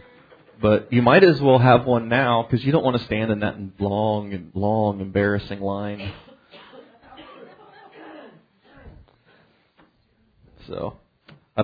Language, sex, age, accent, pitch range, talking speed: English, male, 30-49, American, 105-120 Hz, 120 wpm